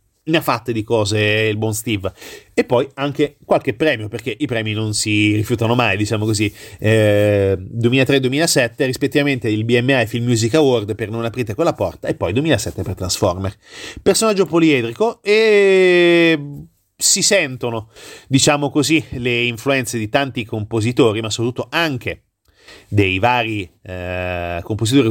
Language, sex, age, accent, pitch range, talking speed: Italian, male, 30-49, native, 110-150 Hz, 145 wpm